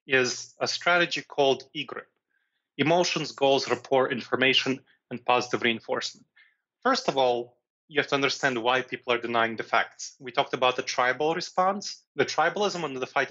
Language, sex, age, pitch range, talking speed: English, male, 30-49, 125-160 Hz, 160 wpm